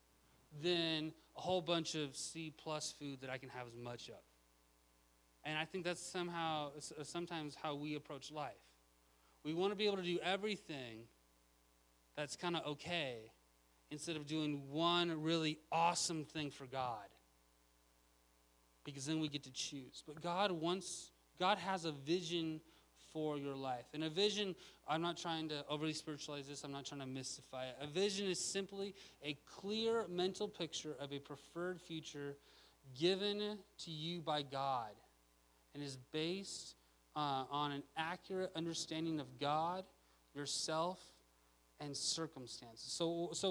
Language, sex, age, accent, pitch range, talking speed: English, male, 30-49, American, 125-170 Hz, 150 wpm